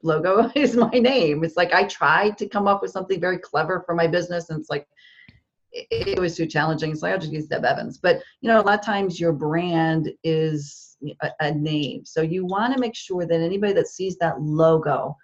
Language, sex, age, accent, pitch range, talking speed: English, female, 40-59, American, 160-205 Hz, 215 wpm